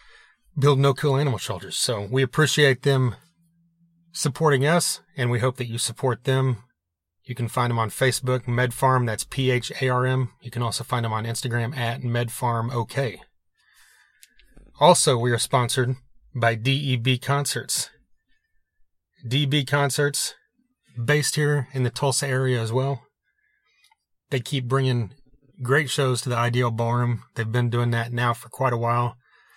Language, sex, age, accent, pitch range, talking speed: English, male, 30-49, American, 115-140 Hz, 145 wpm